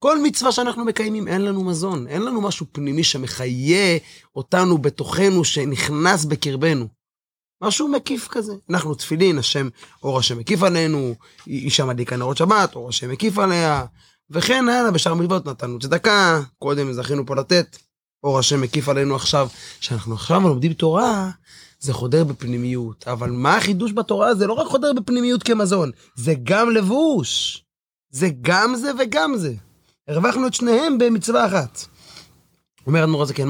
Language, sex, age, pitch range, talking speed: Hebrew, male, 30-49, 135-195 Hz, 150 wpm